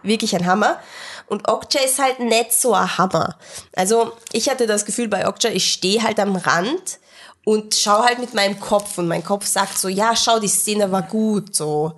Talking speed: 205 wpm